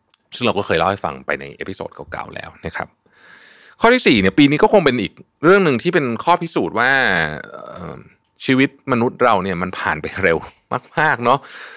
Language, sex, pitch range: Thai, male, 80-125 Hz